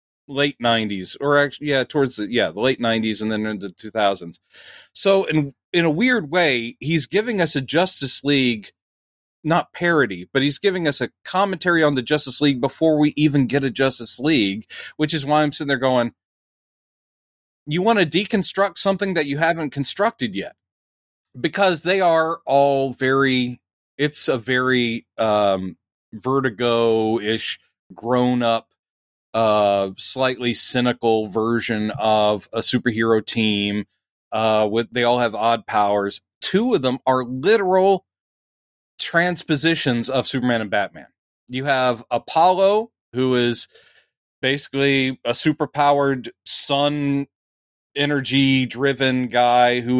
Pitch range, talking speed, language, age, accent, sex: 115-150 Hz, 135 wpm, English, 40-59, American, male